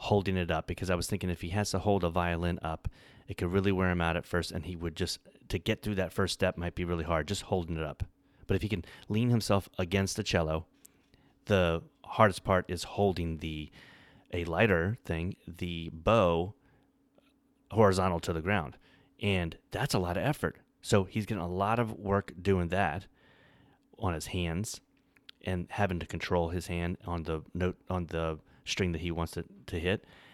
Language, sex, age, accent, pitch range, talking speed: English, male, 30-49, American, 80-100 Hz, 200 wpm